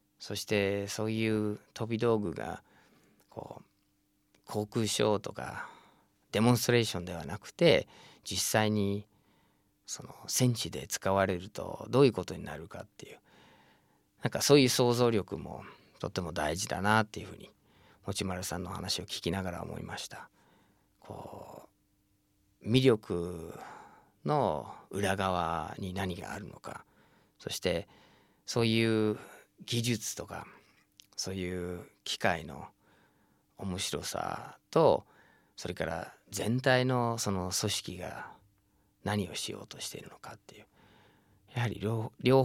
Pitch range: 95-110 Hz